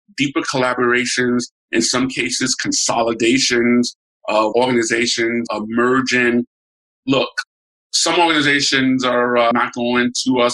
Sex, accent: male, American